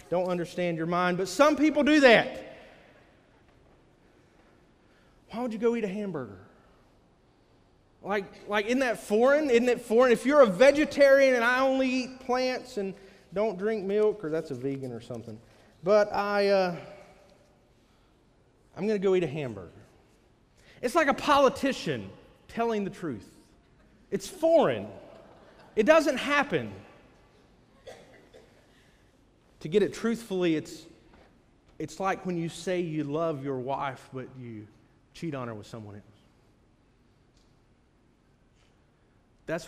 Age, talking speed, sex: 30-49, 130 wpm, male